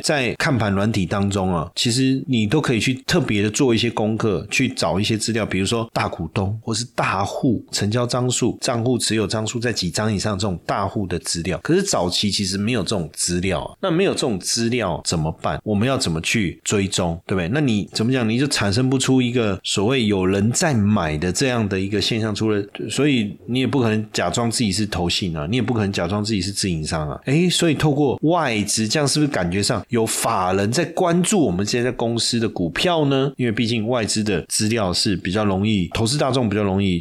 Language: Chinese